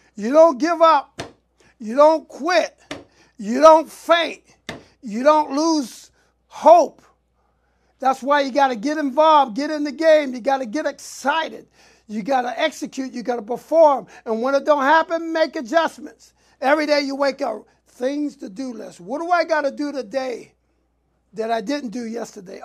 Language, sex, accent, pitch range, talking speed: English, male, American, 230-295 Hz, 175 wpm